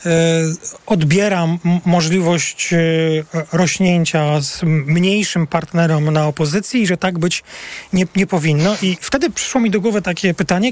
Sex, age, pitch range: male, 40-59, 165-200 Hz